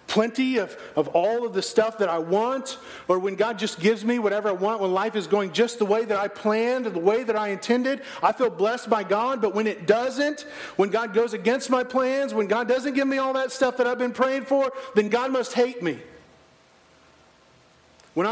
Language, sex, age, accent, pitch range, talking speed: English, male, 40-59, American, 200-255 Hz, 225 wpm